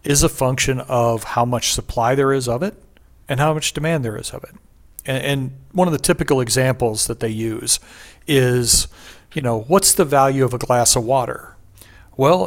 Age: 40-59